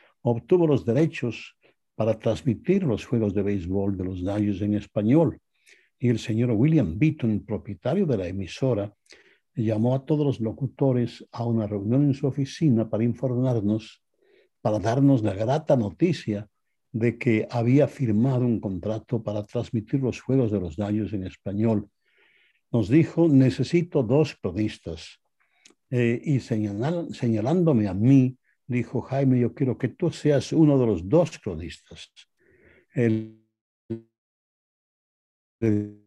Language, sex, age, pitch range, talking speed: English, male, 60-79, 105-135 Hz, 135 wpm